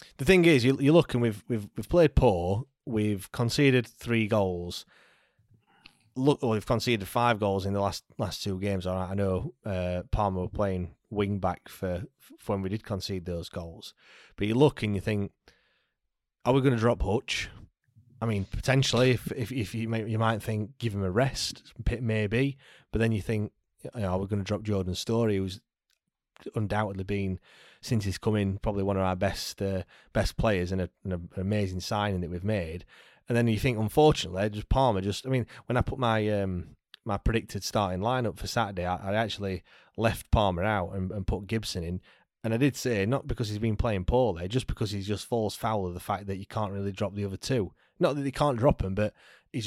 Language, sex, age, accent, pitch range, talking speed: English, male, 30-49, British, 95-120 Hz, 215 wpm